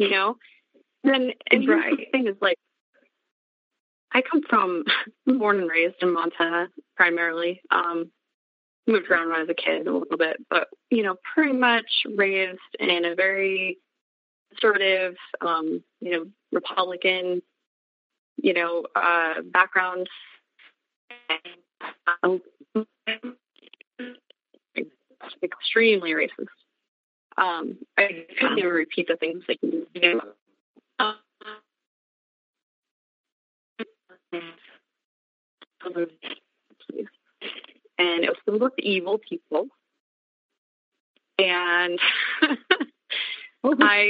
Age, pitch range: 20-39, 180-250 Hz